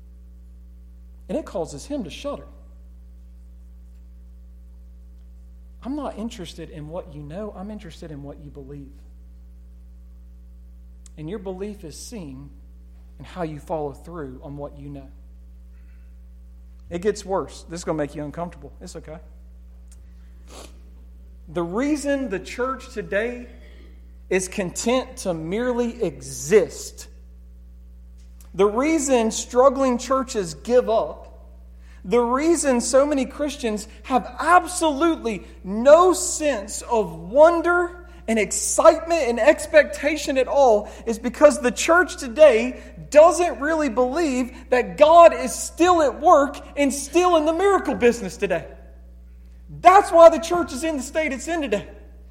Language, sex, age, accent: English, male, 40-59, American